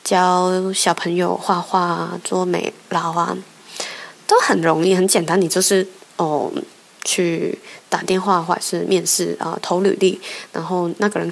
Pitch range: 170-195 Hz